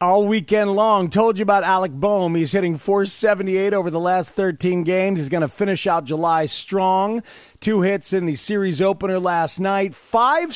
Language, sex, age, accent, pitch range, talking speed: English, male, 40-59, American, 160-210 Hz, 180 wpm